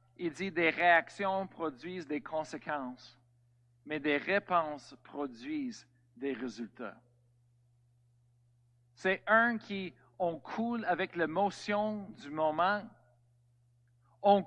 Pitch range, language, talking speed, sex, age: 125-210 Hz, French, 95 wpm, male, 50-69